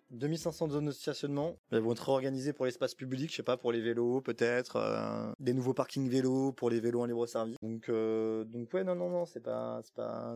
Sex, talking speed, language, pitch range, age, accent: male, 230 wpm, French, 115-165 Hz, 20-39, French